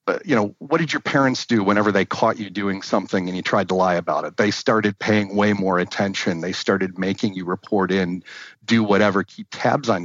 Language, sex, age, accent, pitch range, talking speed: English, male, 40-59, American, 100-130 Hz, 220 wpm